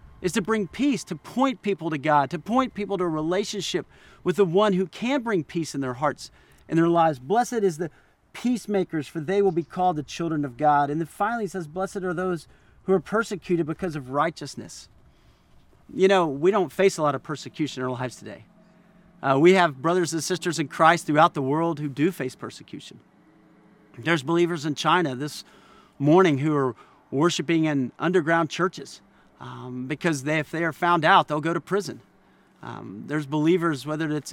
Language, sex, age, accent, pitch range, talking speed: English, male, 40-59, American, 145-185 Hz, 195 wpm